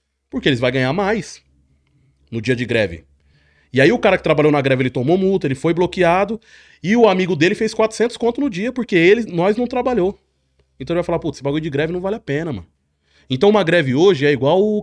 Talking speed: 235 wpm